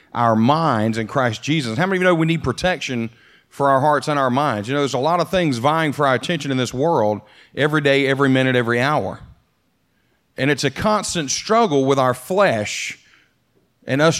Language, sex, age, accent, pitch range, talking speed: English, male, 40-59, American, 130-175 Hz, 205 wpm